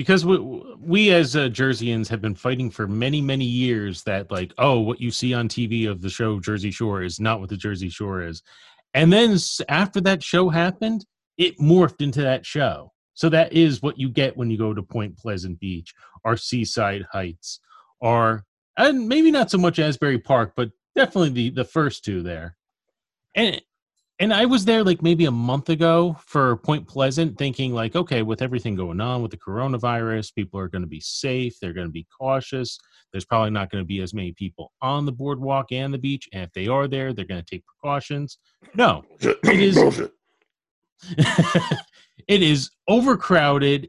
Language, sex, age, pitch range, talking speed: English, male, 30-49, 110-165 Hz, 190 wpm